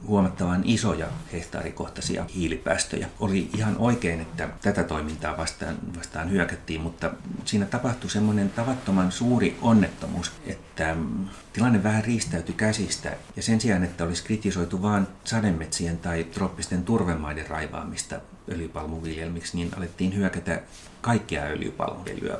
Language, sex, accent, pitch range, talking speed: Finnish, male, native, 85-100 Hz, 115 wpm